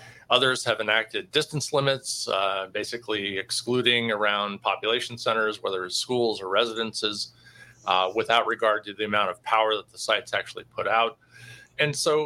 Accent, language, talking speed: American, English, 155 wpm